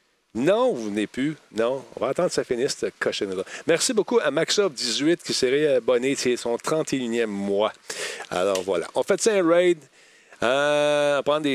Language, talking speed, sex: French, 175 wpm, male